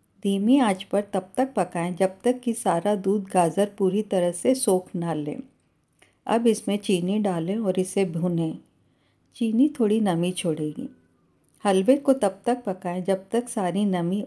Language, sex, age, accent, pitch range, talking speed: Hindi, female, 50-69, native, 175-215 Hz, 160 wpm